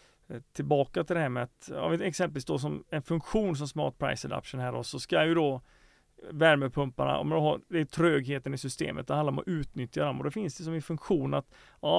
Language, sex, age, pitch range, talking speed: Swedish, male, 30-49, 140-170 Hz, 230 wpm